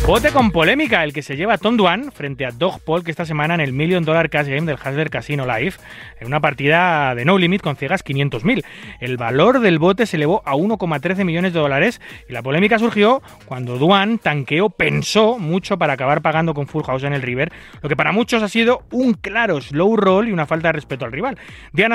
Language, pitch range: Spanish, 140-195 Hz